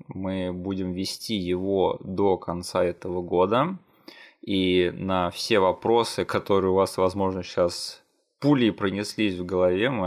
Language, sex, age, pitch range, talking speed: Russian, male, 20-39, 90-105 Hz, 130 wpm